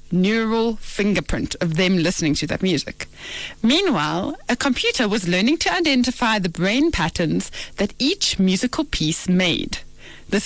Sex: female